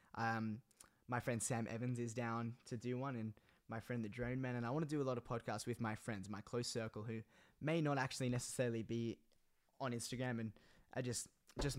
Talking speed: 220 wpm